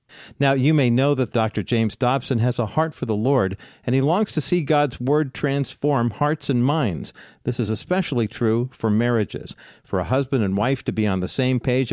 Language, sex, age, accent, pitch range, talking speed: English, male, 50-69, American, 115-145 Hz, 210 wpm